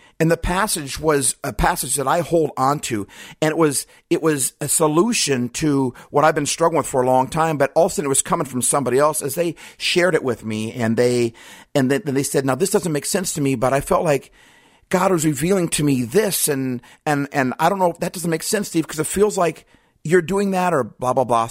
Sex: male